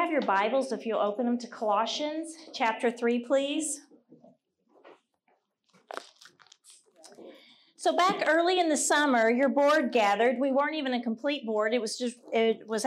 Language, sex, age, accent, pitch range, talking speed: English, female, 40-59, American, 235-305 Hz, 145 wpm